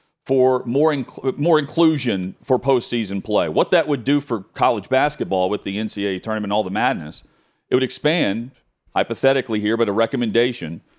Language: English